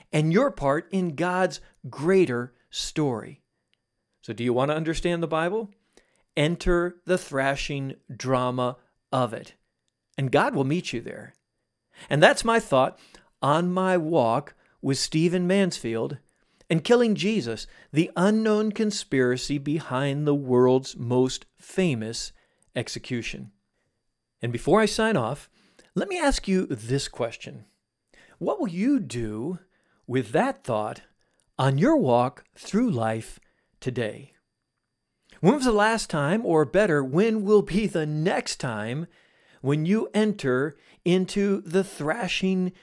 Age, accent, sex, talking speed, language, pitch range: 40-59, American, male, 130 wpm, English, 130-190 Hz